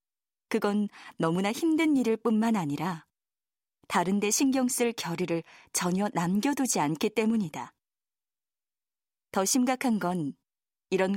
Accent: native